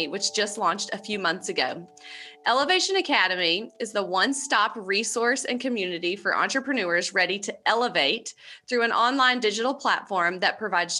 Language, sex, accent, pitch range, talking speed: English, female, American, 180-240 Hz, 155 wpm